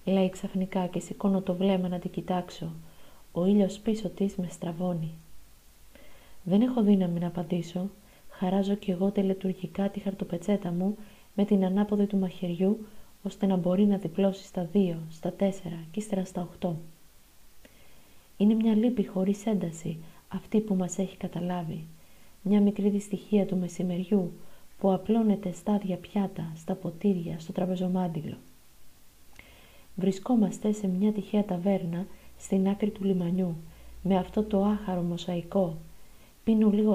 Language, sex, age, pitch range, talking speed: Greek, female, 30-49, 175-200 Hz, 135 wpm